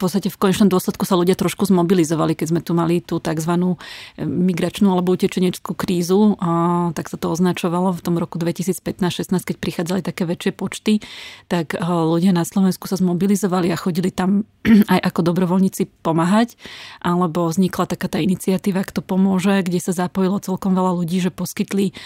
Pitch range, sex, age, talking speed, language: 170-190 Hz, female, 30-49, 160 wpm, Slovak